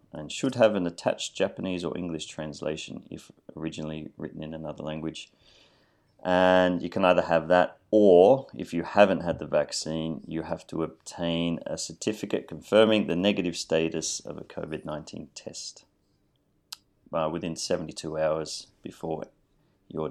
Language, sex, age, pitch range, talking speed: English, male, 30-49, 80-90 Hz, 140 wpm